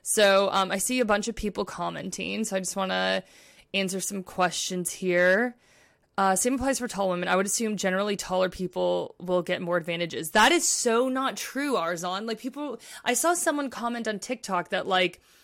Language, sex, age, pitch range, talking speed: English, female, 20-39, 185-235 Hz, 195 wpm